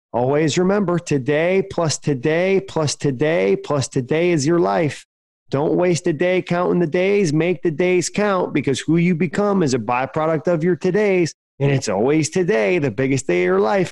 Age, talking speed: 30-49, 185 wpm